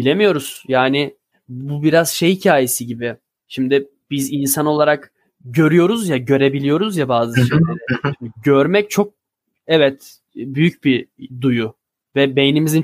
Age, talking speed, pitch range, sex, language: 20-39, 120 wpm, 130-170 Hz, male, Turkish